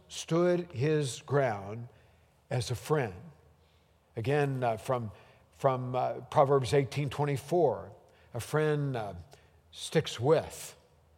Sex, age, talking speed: male, 60-79, 95 wpm